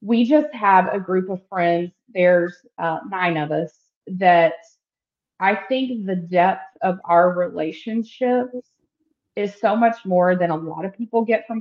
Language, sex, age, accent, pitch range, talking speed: English, female, 20-39, American, 175-220 Hz, 160 wpm